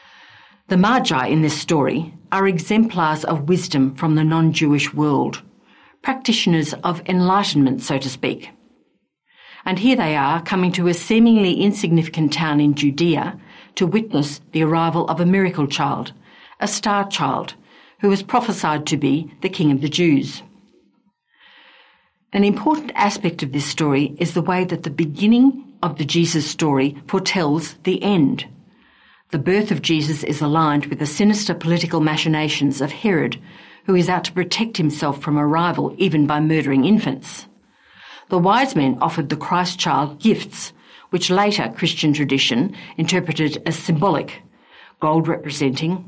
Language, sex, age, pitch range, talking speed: English, female, 50-69, 150-190 Hz, 150 wpm